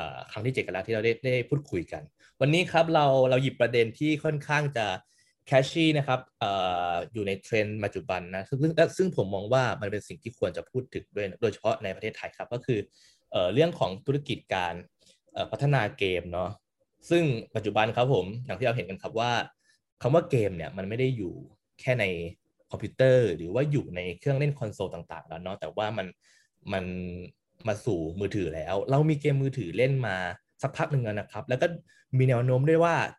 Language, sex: Thai, male